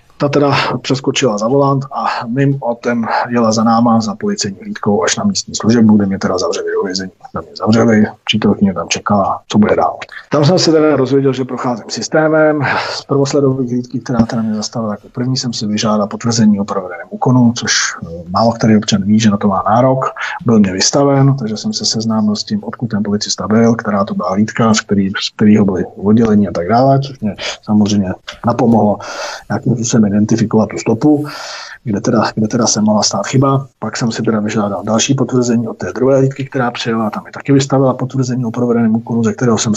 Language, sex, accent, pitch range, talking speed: Czech, male, native, 105-130 Hz, 200 wpm